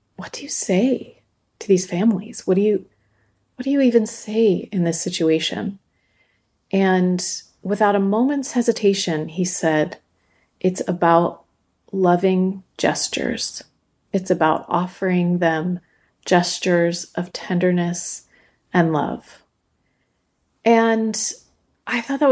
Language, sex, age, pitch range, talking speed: English, female, 30-49, 175-210 Hz, 115 wpm